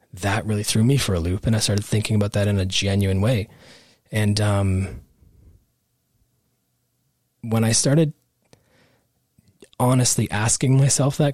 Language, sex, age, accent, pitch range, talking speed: English, male, 20-39, American, 105-130 Hz, 140 wpm